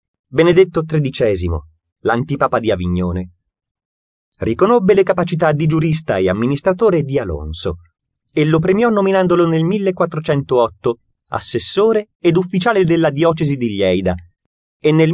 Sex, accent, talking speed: male, native, 115 wpm